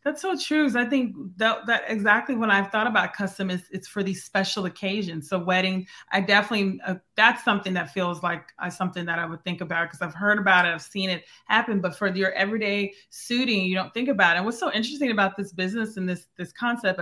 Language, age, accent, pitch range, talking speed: English, 20-39, American, 180-210 Hz, 235 wpm